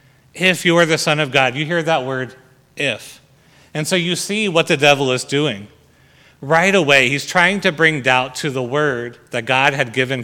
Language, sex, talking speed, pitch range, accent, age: English, male, 205 wpm, 125-150 Hz, American, 30-49